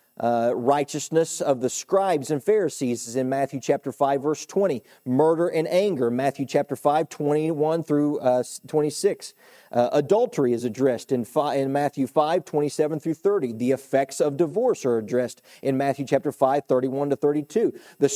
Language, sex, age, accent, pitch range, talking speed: English, male, 40-59, American, 130-160 Hz, 160 wpm